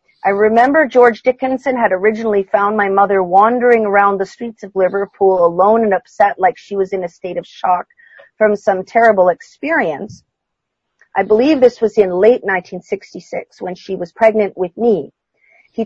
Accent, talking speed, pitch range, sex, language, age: American, 165 wpm, 185-230 Hz, female, English, 40-59